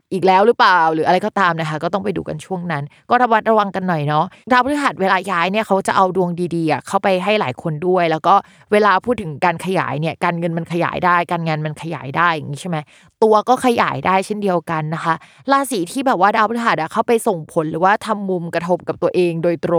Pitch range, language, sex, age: 170-210 Hz, Thai, female, 20-39